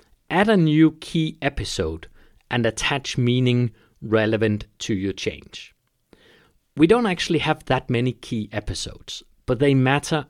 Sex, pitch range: male, 110-150 Hz